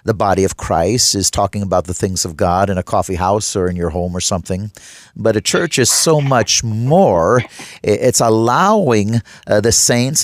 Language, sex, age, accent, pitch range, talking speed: English, male, 50-69, American, 105-145 Hz, 195 wpm